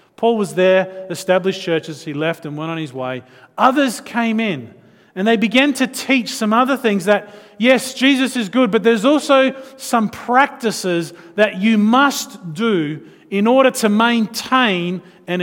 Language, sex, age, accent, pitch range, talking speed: English, male, 40-59, Australian, 165-240 Hz, 165 wpm